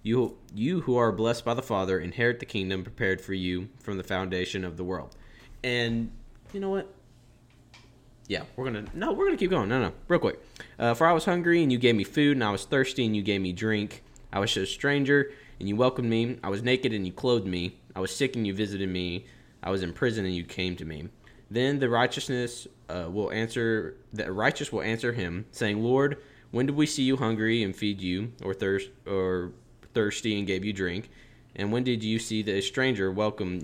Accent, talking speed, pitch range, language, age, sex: American, 220 wpm, 95-130 Hz, English, 20-39, male